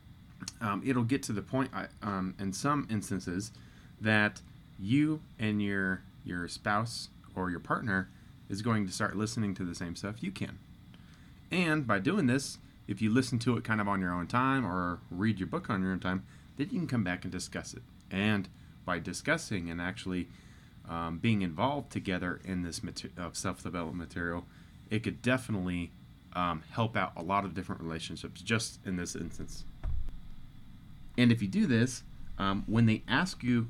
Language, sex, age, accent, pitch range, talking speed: English, male, 30-49, American, 90-125 Hz, 180 wpm